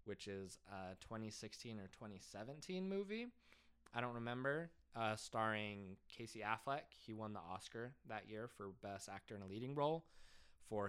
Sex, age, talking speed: male, 20-39, 155 wpm